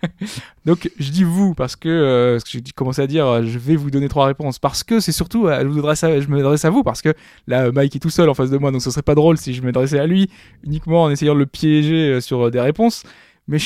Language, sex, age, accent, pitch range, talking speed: French, male, 20-39, French, 130-175 Hz, 260 wpm